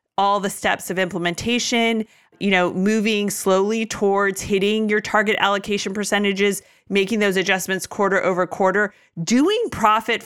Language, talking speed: English, 135 wpm